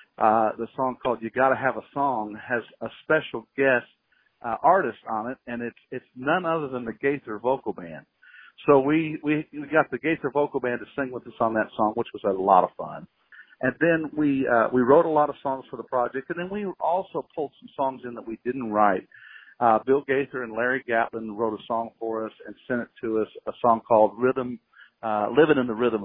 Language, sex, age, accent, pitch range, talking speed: English, male, 50-69, American, 110-130 Hz, 230 wpm